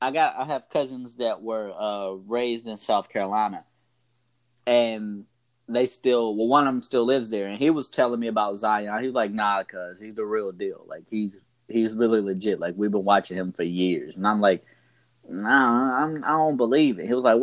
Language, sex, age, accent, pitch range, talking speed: English, male, 20-39, American, 110-135 Hz, 220 wpm